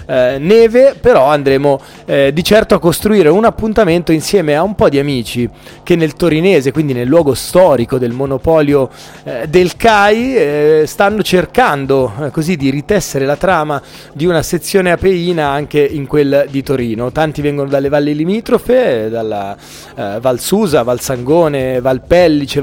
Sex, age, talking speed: male, 30-49, 155 wpm